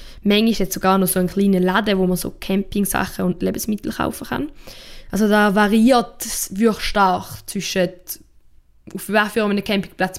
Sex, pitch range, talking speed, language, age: female, 185-225 Hz, 160 wpm, German, 10-29